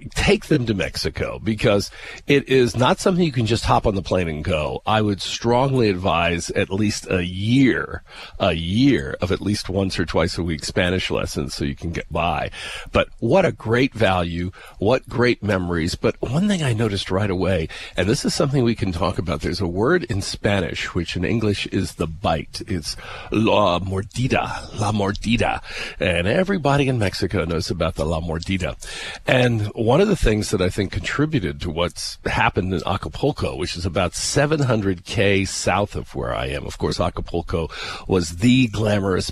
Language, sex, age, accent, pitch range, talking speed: English, male, 40-59, American, 85-115 Hz, 185 wpm